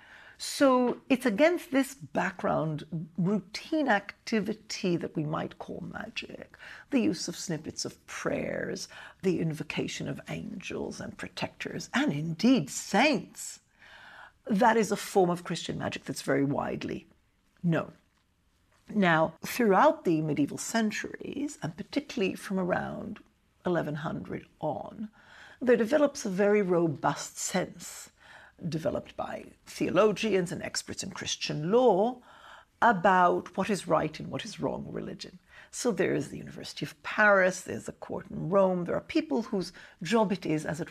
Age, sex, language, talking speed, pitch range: 60-79, female, English, 135 wpm, 160-215 Hz